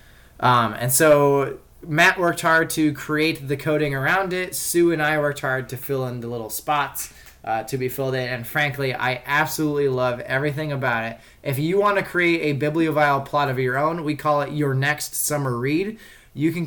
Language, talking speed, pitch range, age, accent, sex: English, 200 wpm, 125-150 Hz, 20-39, American, male